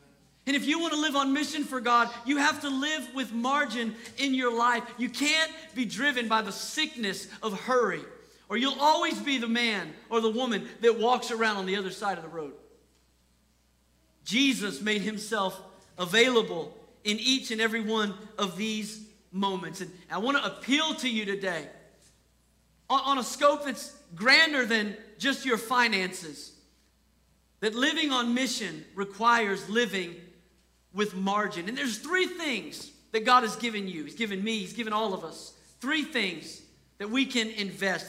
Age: 40-59